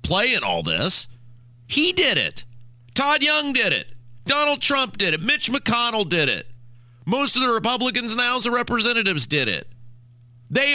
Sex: male